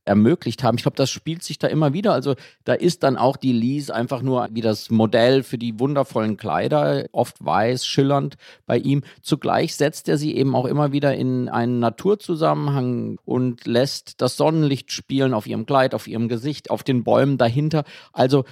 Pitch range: 125-155 Hz